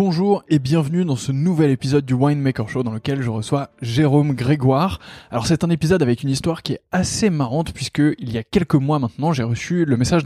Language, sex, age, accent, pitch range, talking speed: French, male, 20-39, French, 120-155 Hz, 220 wpm